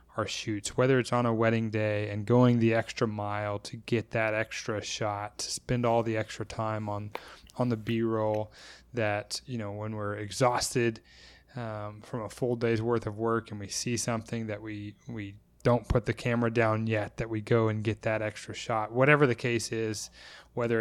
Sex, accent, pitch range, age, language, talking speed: male, American, 105-120 Hz, 20-39, English, 195 wpm